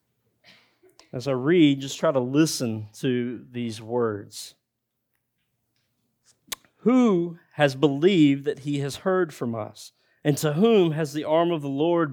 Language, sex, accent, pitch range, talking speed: English, male, American, 120-155 Hz, 140 wpm